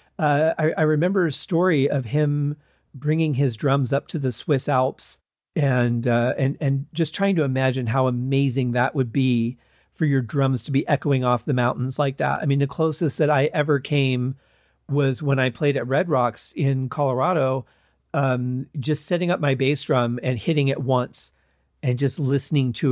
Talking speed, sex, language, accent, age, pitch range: 190 wpm, male, English, American, 40-59, 125-150 Hz